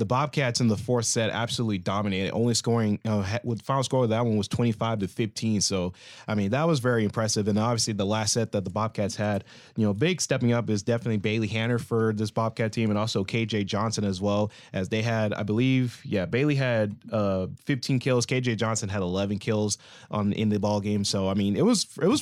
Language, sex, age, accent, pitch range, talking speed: English, male, 20-39, American, 105-125 Hz, 220 wpm